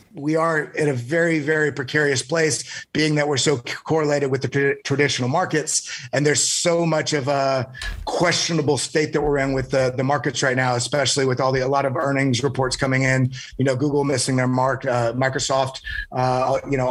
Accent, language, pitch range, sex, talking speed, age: American, English, 130-155 Hz, male, 200 wpm, 30-49